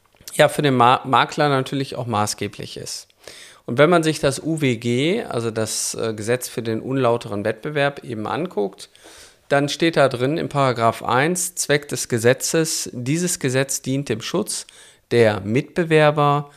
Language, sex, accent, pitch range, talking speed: German, male, German, 115-145 Hz, 145 wpm